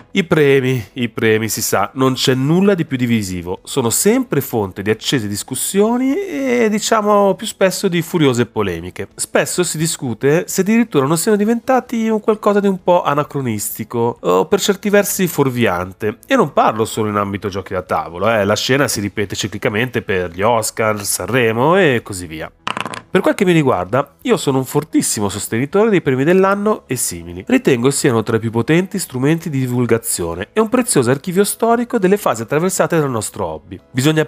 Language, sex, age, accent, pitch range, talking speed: Italian, male, 30-49, native, 110-180 Hz, 180 wpm